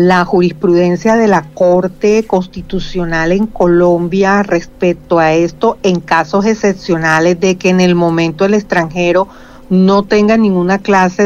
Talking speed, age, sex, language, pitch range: 135 wpm, 50-69, female, Spanish, 180-215 Hz